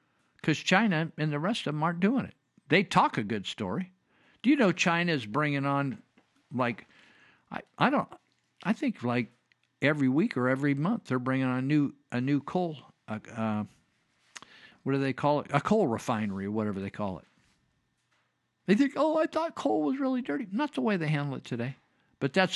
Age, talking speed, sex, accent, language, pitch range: 50-69, 195 wpm, male, American, English, 135-200 Hz